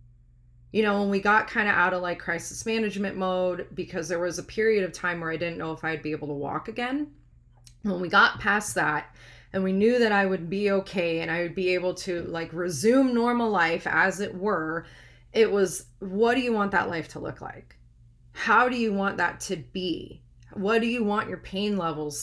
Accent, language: American, English